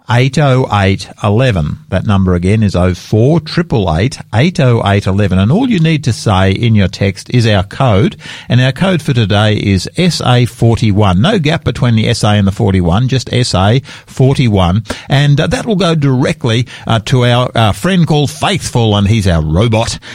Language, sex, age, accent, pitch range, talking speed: English, male, 50-69, Australian, 100-135 Hz, 175 wpm